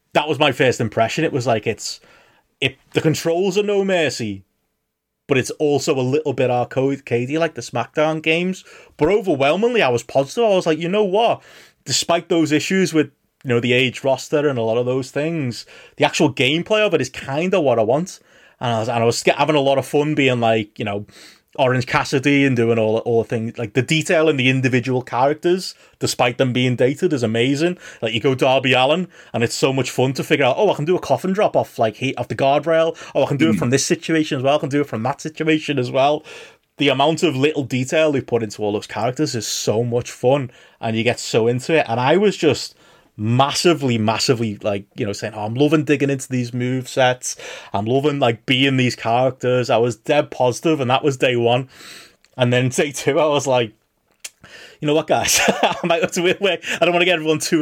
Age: 30-49